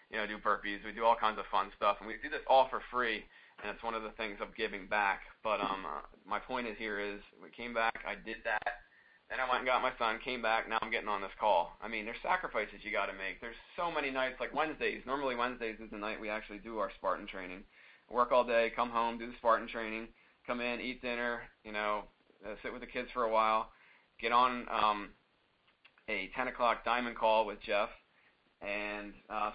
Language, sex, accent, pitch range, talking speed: English, male, American, 105-120 Hz, 235 wpm